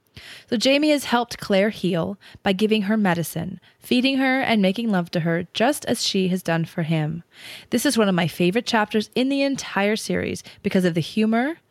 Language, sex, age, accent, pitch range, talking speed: English, female, 20-39, American, 185-245 Hz, 200 wpm